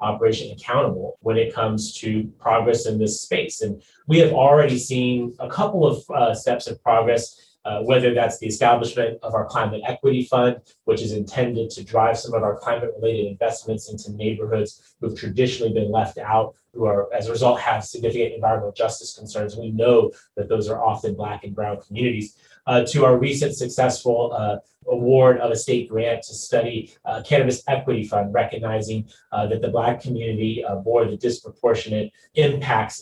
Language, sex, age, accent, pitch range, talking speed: English, male, 30-49, American, 110-125 Hz, 180 wpm